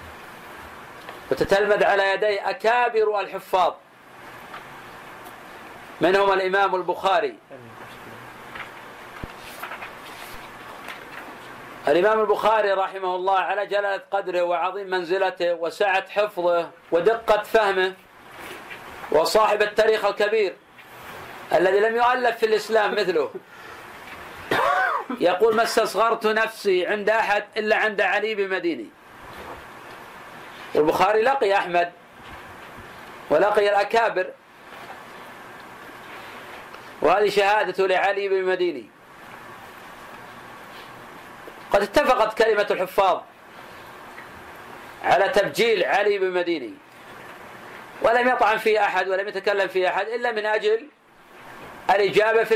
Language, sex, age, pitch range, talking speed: Arabic, male, 40-59, 190-225 Hz, 80 wpm